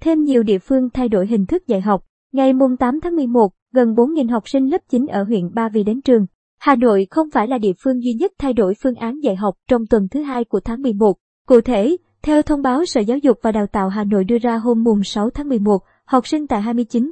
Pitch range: 215-270 Hz